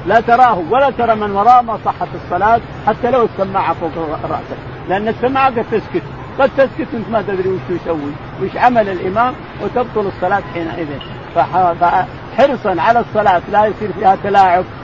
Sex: male